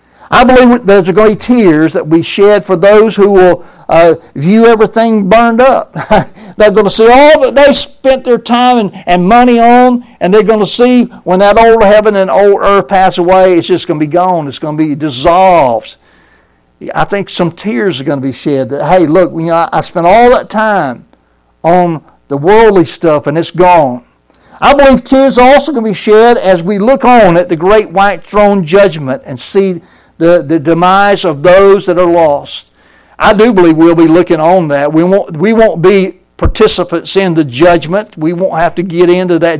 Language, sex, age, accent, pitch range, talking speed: English, male, 60-79, American, 170-225 Hz, 210 wpm